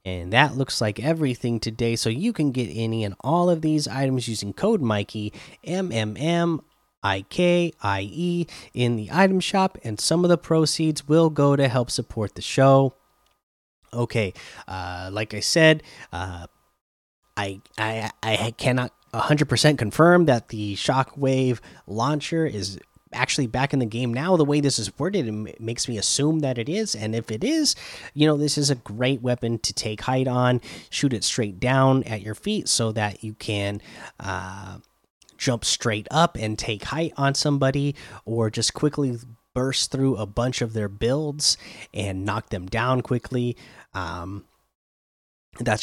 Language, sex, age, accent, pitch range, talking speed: English, male, 20-39, American, 110-150 Hz, 170 wpm